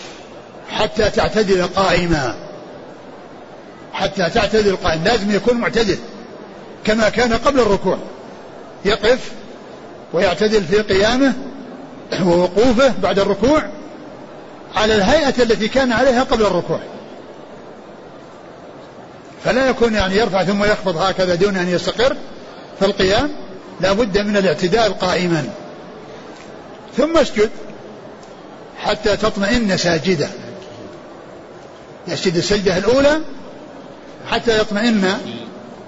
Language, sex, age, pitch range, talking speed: Arabic, male, 50-69, 185-235 Hz, 90 wpm